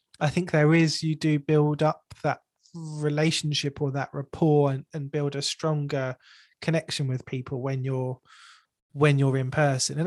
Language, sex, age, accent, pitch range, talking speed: English, male, 20-39, British, 135-155 Hz, 165 wpm